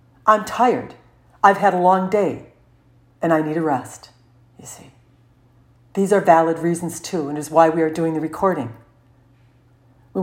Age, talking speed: 50-69, 165 wpm